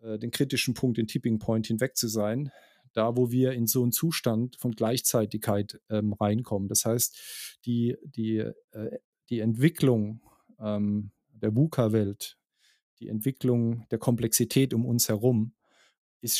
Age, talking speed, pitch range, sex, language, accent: 40-59, 140 wpm, 115-135 Hz, male, German, German